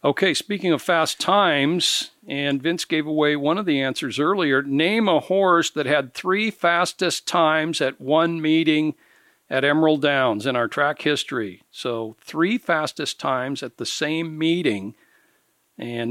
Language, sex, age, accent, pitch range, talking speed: English, male, 60-79, American, 130-165 Hz, 155 wpm